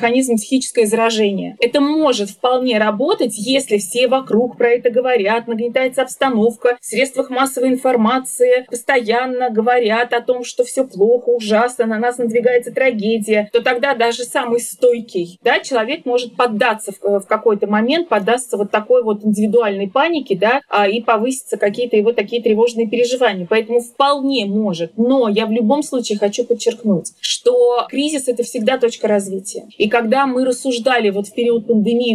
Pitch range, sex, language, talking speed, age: 215-255 Hz, female, Russian, 150 wpm, 20-39